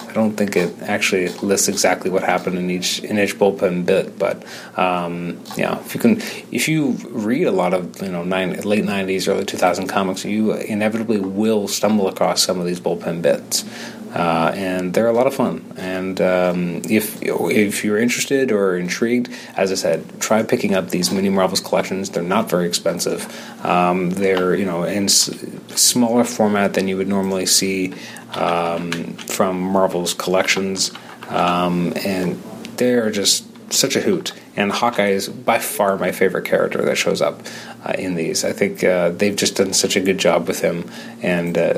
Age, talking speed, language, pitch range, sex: 30-49, 180 wpm, English, 95-110 Hz, male